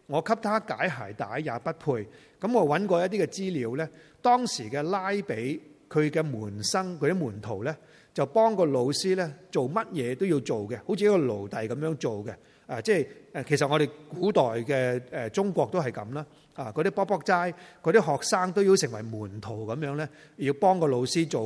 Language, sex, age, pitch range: Chinese, male, 30-49, 125-180 Hz